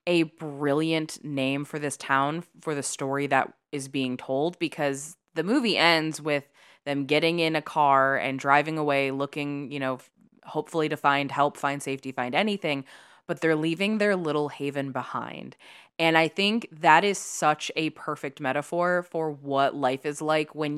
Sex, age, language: female, 20-39, English